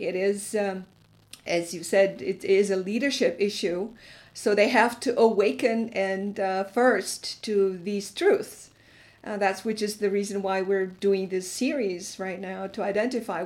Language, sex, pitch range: English, female, 190-235 Hz